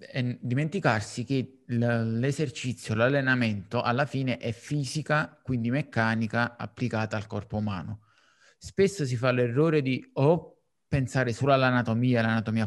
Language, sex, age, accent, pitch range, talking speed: Italian, male, 30-49, native, 115-135 Hz, 115 wpm